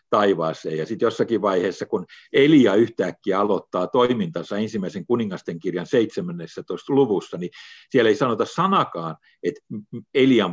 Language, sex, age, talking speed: Finnish, male, 50-69, 120 wpm